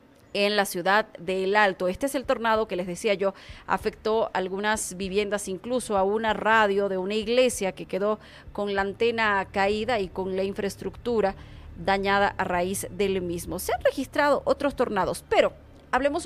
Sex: female